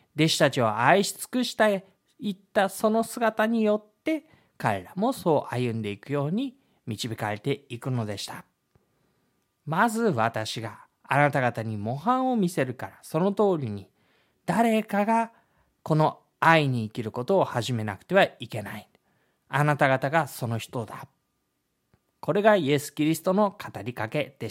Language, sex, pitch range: Japanese, male, 125-195 Hz